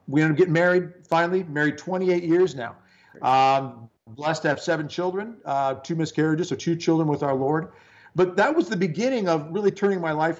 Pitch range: 145-180 Hz